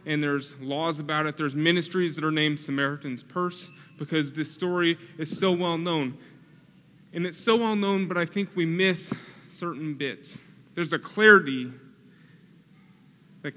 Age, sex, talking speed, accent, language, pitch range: 30-49, male, 155 wpm, American, English, 155-190 Hz